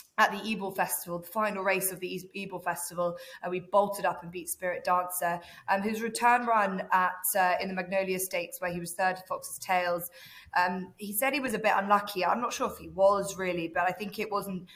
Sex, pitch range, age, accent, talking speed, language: female, 175-205 Hz, 20-39, British, 230 wpm, English